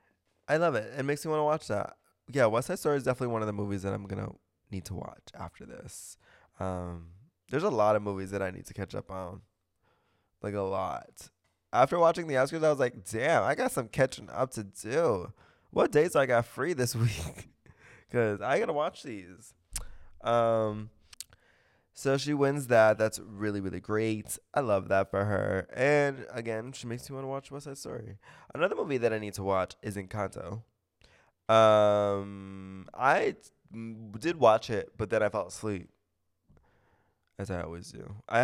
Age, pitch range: 20-39, 95-120 Hz